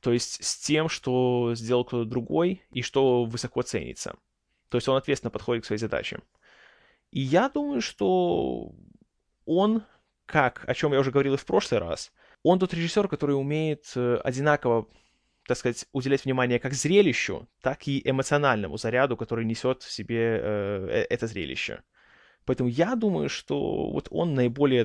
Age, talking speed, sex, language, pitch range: 20-39, 155 wpm, male, Russian, 120-150 Hz